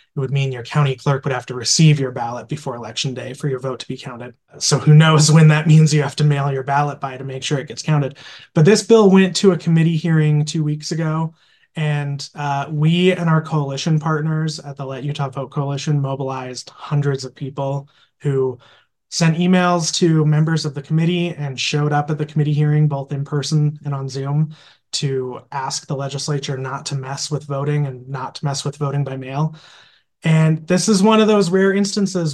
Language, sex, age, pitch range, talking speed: English, male, 20-39, 140-160 Hz, 210 wpm